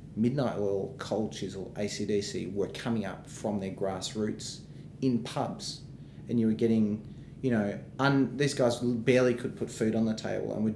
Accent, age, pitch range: Australian, 30-49, 105-125 Hz